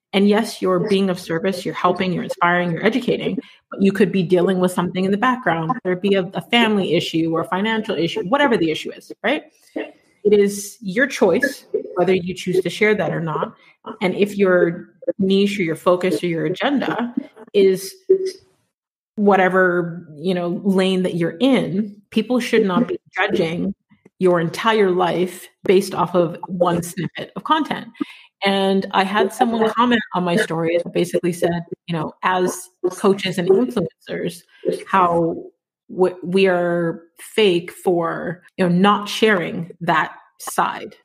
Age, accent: 30-49, American